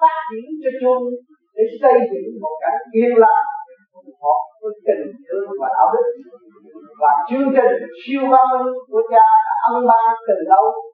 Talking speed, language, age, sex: 165 wpm, Vietnamese, 50-69, male